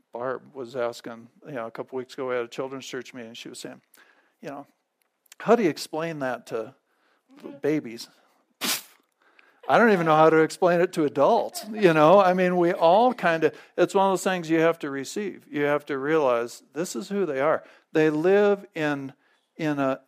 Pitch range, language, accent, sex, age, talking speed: 140-180 Hz, English, American, male, 50-69, 205 wpm